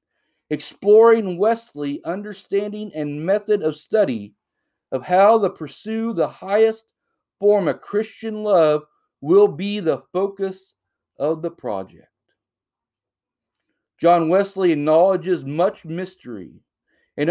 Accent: American